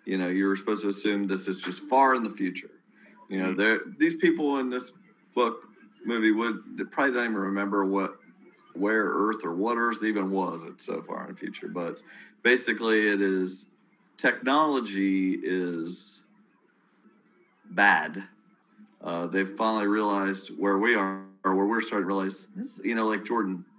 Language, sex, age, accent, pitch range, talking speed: English, male, 40-59, American, 95-115 Hz, 160 wpm